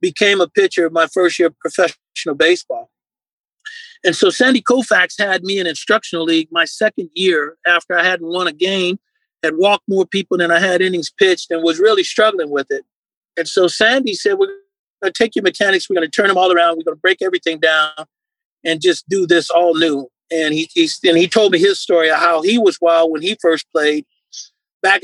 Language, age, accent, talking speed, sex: English, 40-59, American, 210 wpm, male